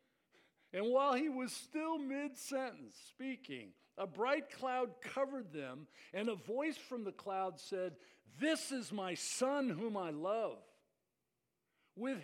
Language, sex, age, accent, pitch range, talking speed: English, male, 60-79, American, 150-245 Hz, 130 wpm